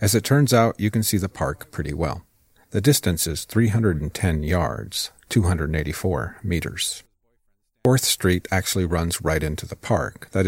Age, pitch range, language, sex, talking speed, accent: 40-59, 85-110 Hz, English, male, 155 wpm, American